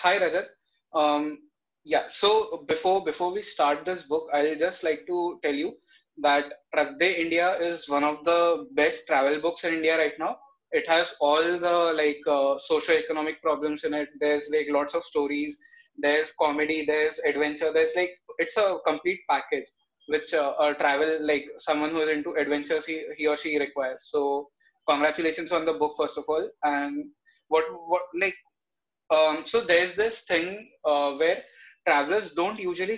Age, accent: 20-39, native